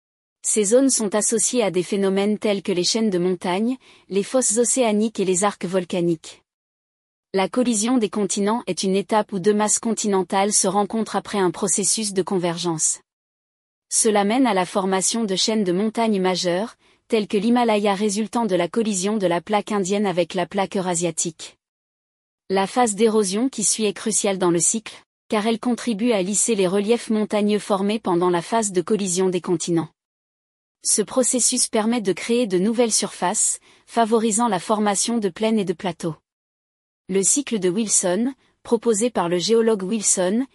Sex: female